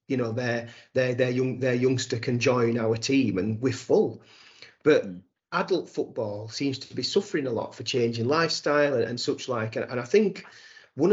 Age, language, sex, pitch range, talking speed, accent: 30-49, English, male, 120-145 Hz, 195 wpm, British